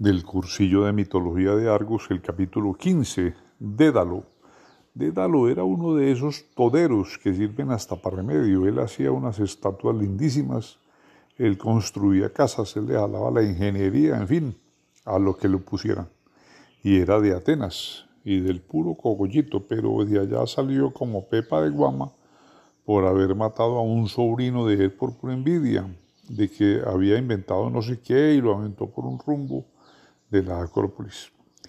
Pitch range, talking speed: 100-135 Hz, 160 wpm